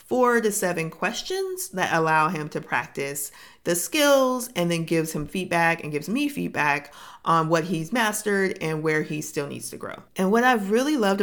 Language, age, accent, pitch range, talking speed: English, 40-59, American, 155-200 Hz, 195 wpm